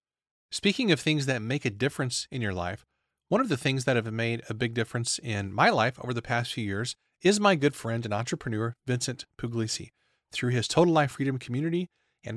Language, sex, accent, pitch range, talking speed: English, male, American, 120-165 Hz, 210 wpm